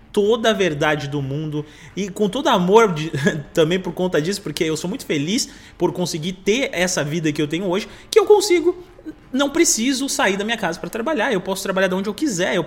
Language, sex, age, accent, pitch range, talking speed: Portuguese, male, 20-39, Brazilian, 160-240 Hz, 225 wpm